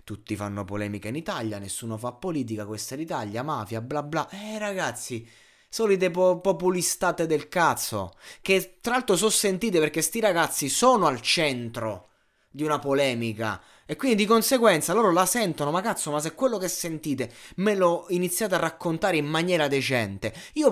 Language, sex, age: Italian, male, 20-39